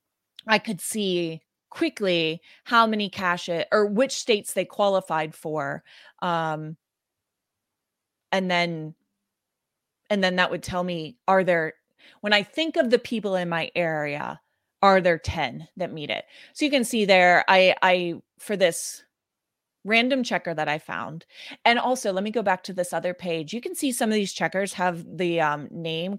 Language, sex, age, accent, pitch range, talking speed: English, female, 30-49, American, 170-225 Hz, 170 wpm